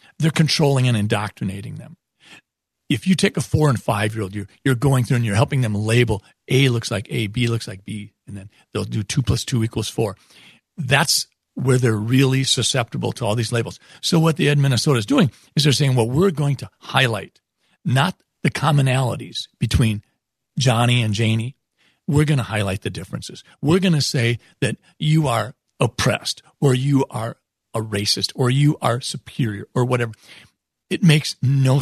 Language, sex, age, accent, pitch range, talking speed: English, male, 50-69, American, 115-155 Hz, 180 wpm